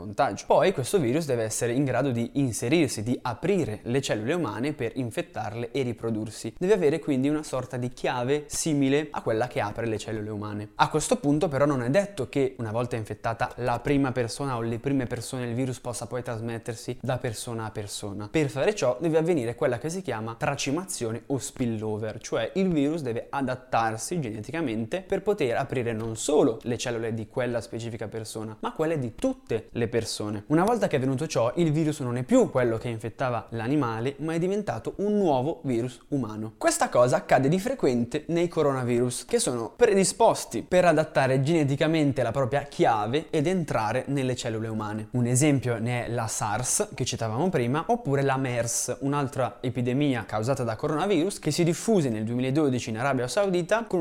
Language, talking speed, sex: Italian, 185 wpm, male